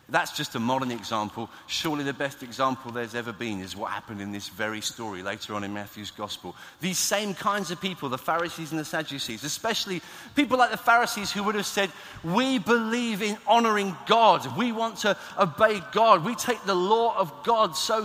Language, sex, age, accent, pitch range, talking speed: English, male, 40-59, British, 115-180 Hz, 200 wpm